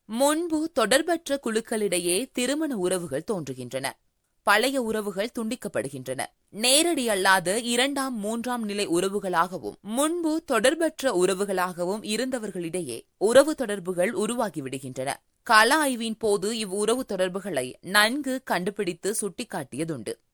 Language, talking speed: Tamil, 85 wpm